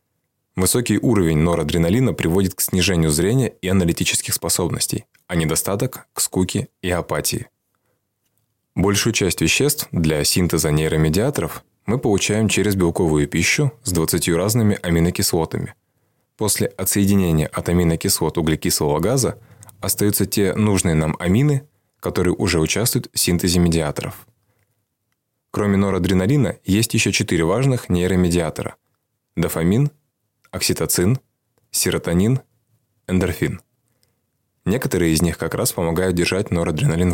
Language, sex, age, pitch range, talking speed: Russian, male, 20-39, 85-115 Hz, 110 wpm